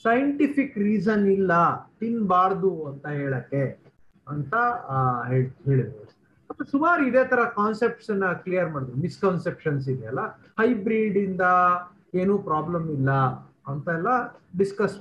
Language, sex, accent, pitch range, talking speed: Kannada, male, native, 155-235 Hz, 95 wpm